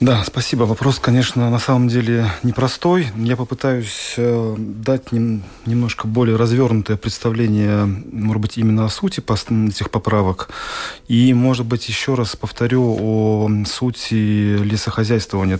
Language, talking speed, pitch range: Russian, 120 wpm, 105-125 Hz